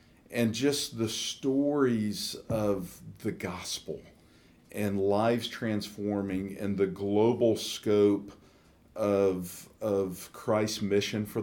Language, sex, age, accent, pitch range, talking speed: English, male, 50-69, American, 100-125 Hz, 100 wpm